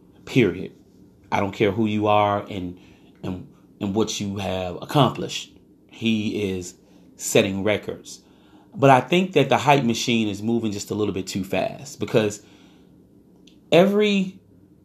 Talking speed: 140 wpm